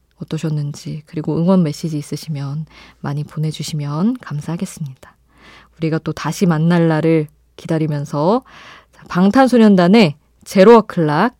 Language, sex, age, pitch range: Korean, female, 20-39, 155-215 Hz